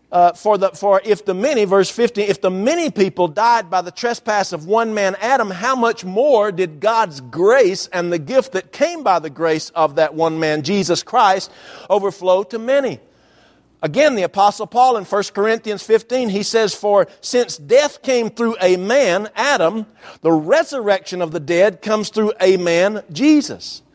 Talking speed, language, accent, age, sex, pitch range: 180 wpm, English, American, 50-69, male, 185-250 Hz